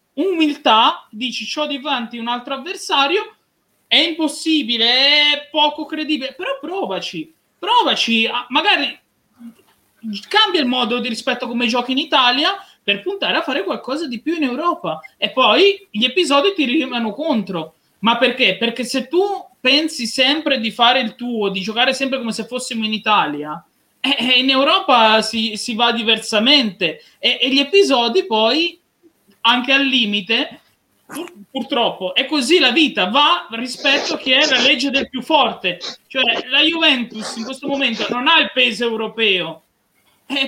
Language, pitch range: Italian, 225-290 Hz